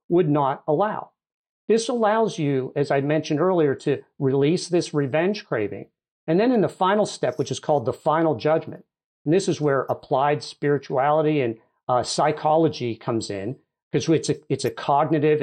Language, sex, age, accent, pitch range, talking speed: English, male, 50-69, American, 145-200 Hz, 170 wpm